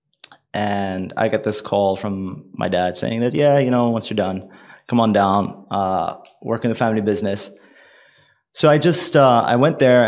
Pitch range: 95-120 Hz